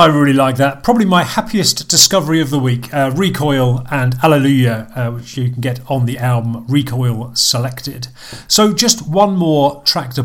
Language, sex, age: English, male, 40-59